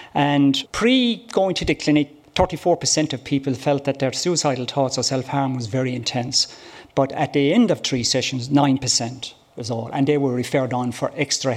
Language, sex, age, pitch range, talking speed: English, male, 50-69, 130-155 Hz, 180 wpm